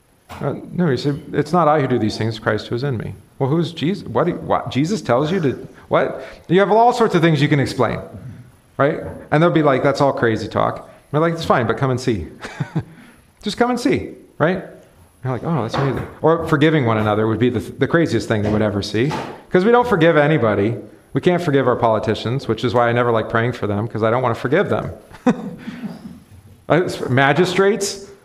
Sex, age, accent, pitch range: male, 40-59, American, 115-160 Hz